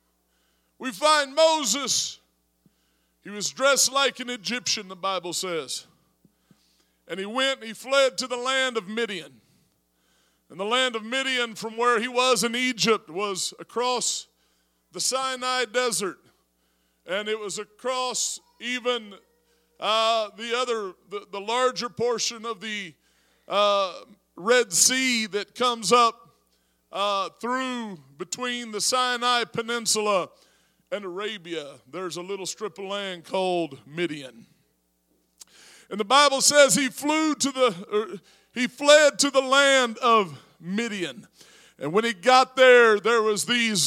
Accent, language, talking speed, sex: American, English, 135 wpm, male